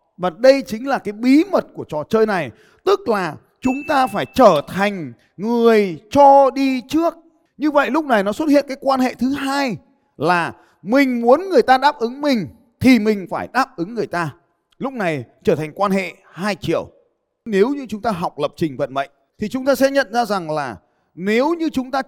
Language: Vietnamese